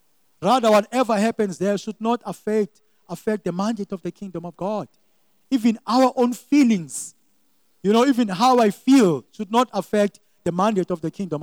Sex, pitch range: male, 170-225 Hz